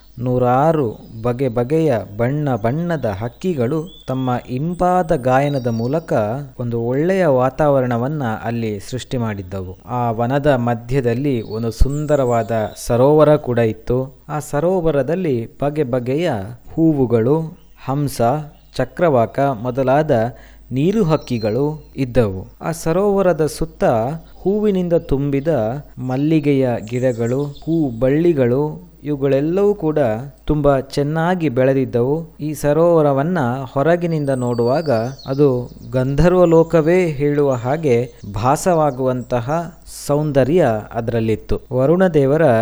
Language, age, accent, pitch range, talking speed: Kannada, 20-39, native, 120-150 Hz, 85 wpm